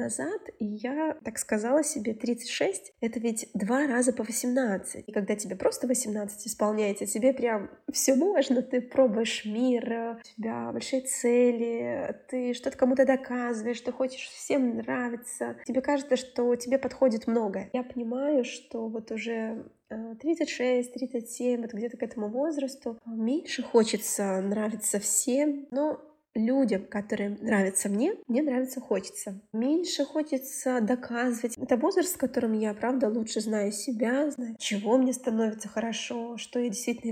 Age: 20-39